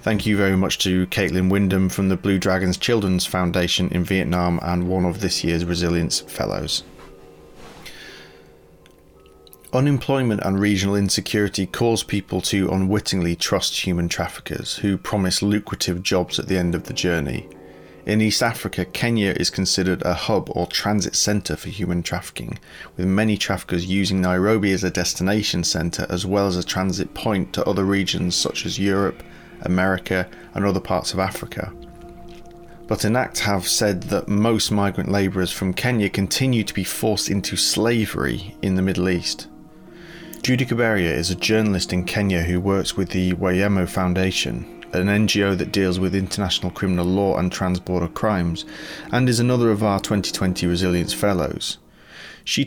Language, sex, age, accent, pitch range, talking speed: English, male, 30-49, British, 90-100 Hz, 155 wpm